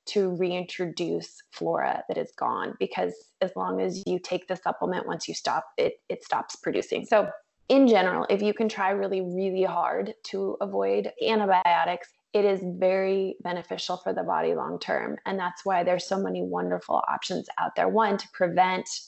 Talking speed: 175 wpm